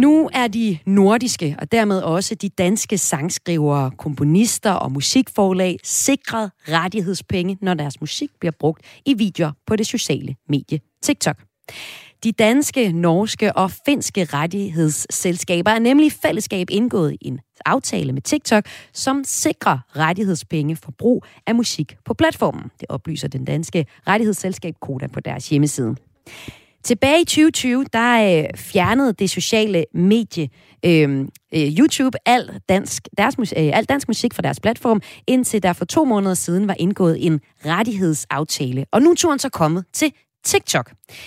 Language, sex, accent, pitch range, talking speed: Danish, female, native, 155-225 Hz, 145 wpm